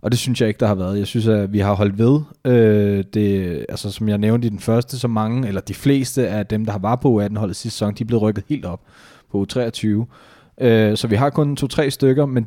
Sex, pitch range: male, 105-125 Hz